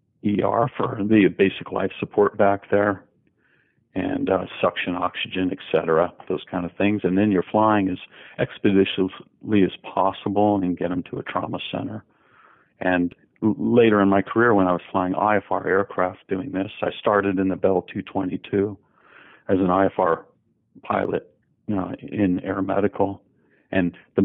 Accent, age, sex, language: American, 50-69, male, English